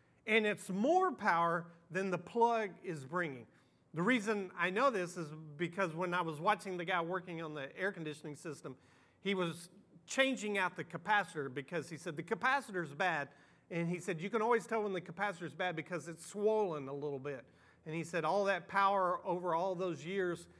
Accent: American